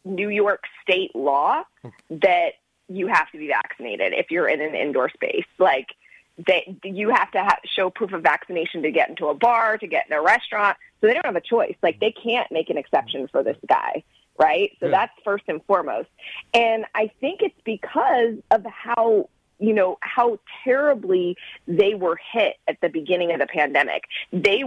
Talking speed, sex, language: 185 wpm, female, English